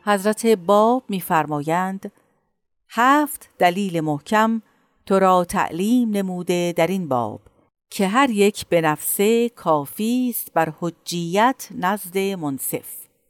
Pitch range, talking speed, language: 175-255 Hz, 110 wpm, Persian